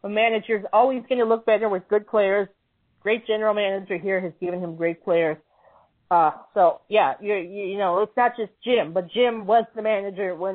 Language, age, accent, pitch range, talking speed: English, 40-59, American, 185-225 Hz, 195 wpm